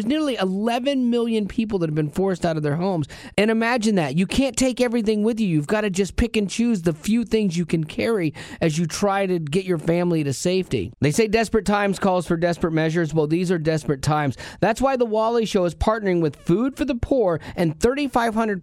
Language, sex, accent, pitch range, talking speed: English, male, American, 165-235 Hz, 230 wpm